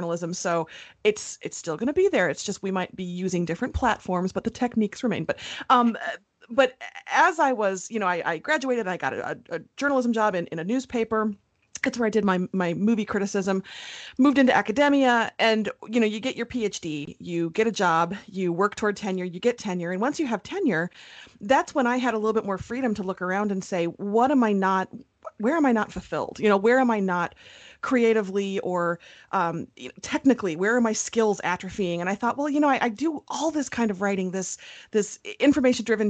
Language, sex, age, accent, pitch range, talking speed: English, female, 30-49, American, 190-250 Hz, 220 wpm